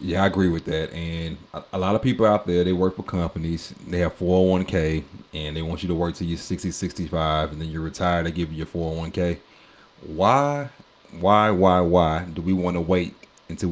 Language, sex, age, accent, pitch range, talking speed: English, male, 30-49, American, 85-105 Hz, 210 wpm